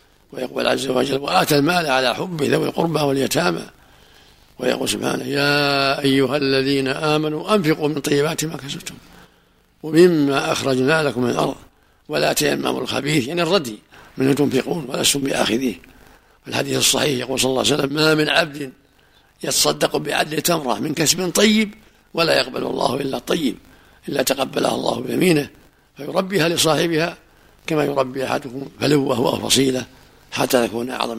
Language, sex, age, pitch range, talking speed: Arabic, male, 60-79, 130-155 Hz, 140 wpm